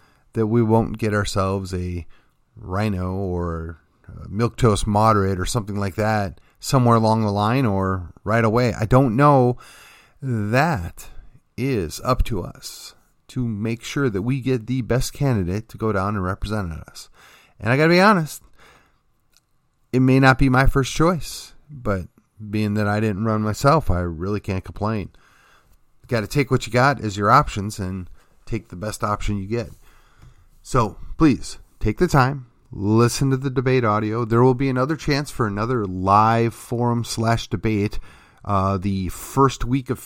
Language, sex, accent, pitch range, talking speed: English, male, American, 100-130 Hz, 165 wpm